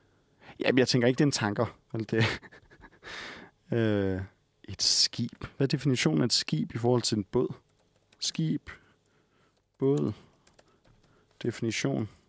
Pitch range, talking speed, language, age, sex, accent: 105-130 Hz, 120 wpm, Danish, 30-49, male, native